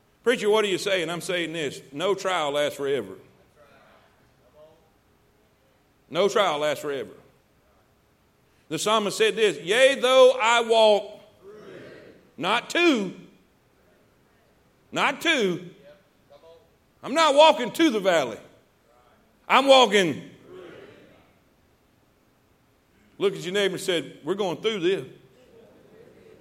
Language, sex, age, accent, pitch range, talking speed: English, male, 50-69, American, 170-245 Hz, 105 wpm